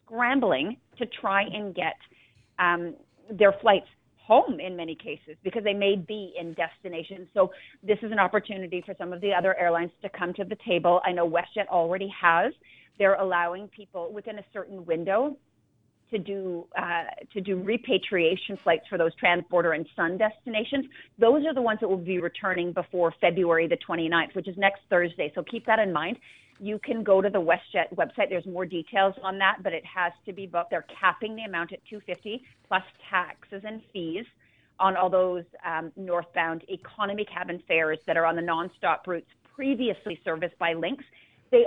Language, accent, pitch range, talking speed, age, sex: English, American, 175-210 Hz, 185 wpm, 40-59, female